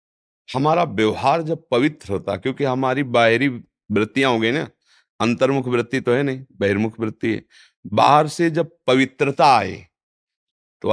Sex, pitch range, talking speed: male, 105-130 Hz, 135 wpm